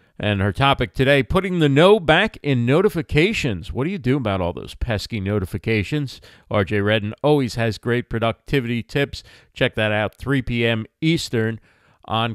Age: 40-59